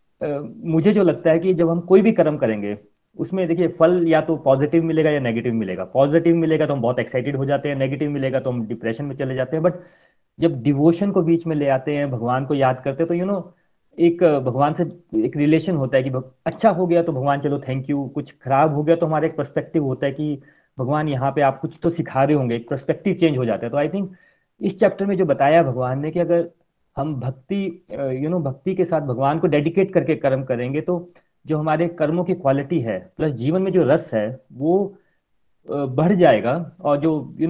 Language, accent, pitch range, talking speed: Hindi, native, 135-170 Hz, 230 wpm